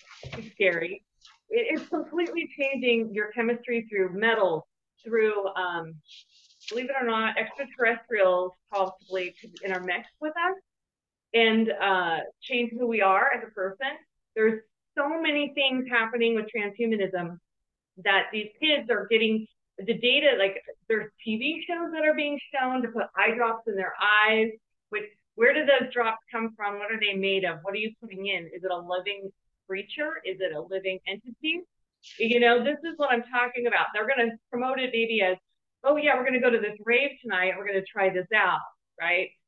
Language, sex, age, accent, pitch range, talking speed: English, female, 30-49, American, 195-270 Hz, 180 wpm